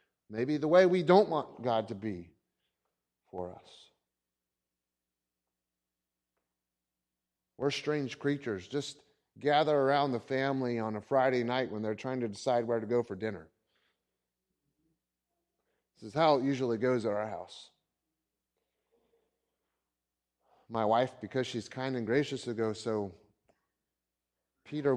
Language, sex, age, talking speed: English, male, 30-49, 125 wpm